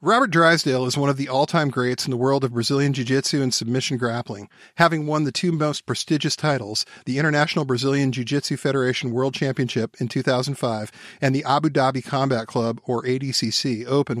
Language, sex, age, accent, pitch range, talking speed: English, male, 40-59, American, 125-150 Hz, 175 wpm